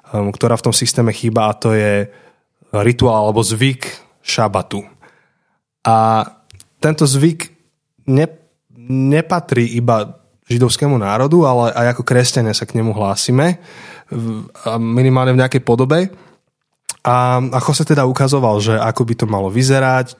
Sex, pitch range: male, 115-135 Hz